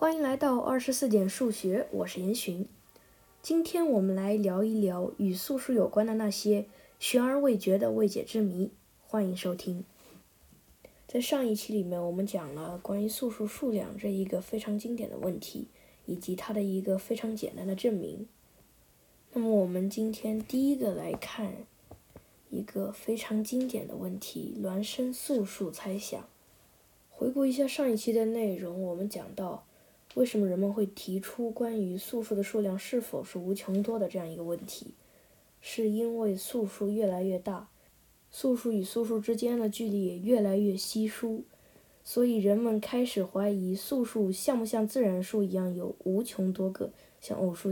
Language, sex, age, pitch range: Chinese, female, 10-29, 195-230 Hz